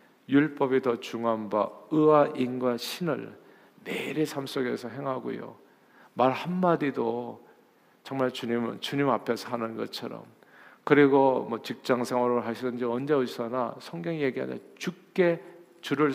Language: Korean